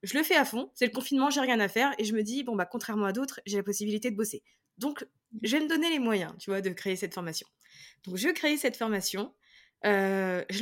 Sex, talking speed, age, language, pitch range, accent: female, 245 wpm, 20-39, French, 200-255 Hz, French